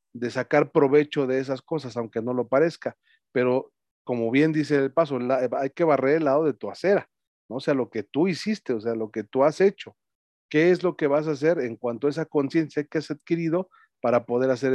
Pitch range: 115-150 Hz